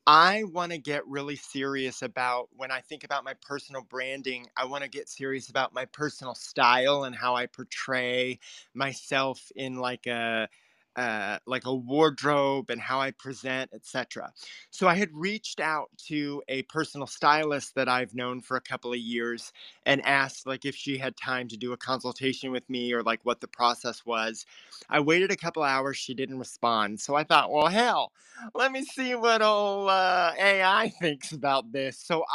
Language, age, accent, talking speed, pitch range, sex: English, 20-39, American, 185 wpm, 125-155 Hz, male